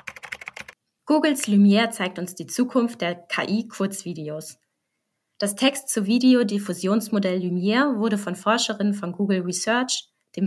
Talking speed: 115 wpm